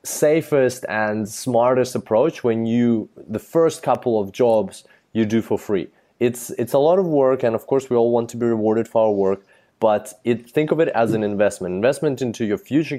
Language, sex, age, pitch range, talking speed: English, male, 20-39, 105-130 Hz, 210 wpm